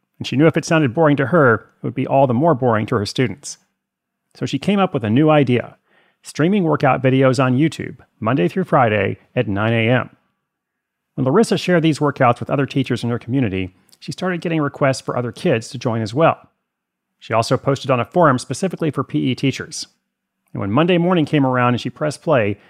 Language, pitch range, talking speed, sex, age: English, 115-150 Hz, 210 wpm, male, 30-49